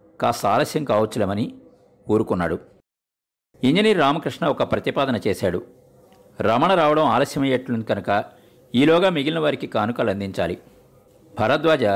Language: Telugu